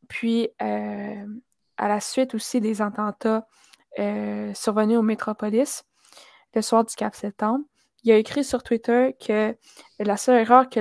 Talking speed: 150 wpm